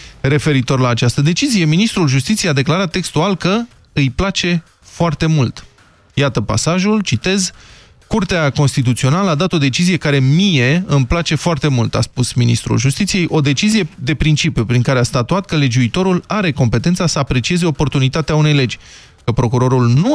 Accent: native